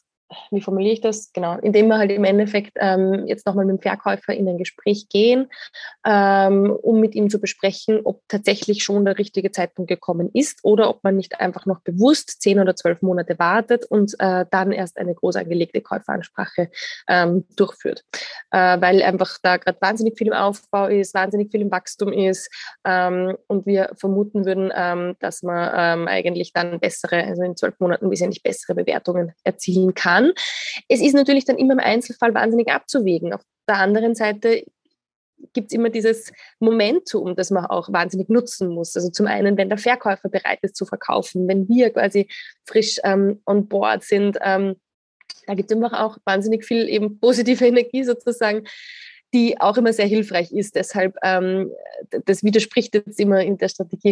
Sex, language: female, German